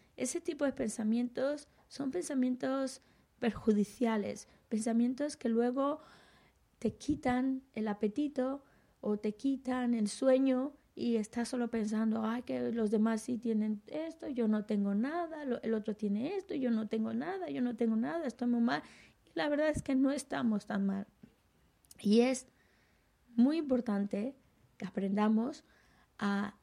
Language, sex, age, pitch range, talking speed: Spanish, female, 20-39, 205-255 Hz, 145 wpm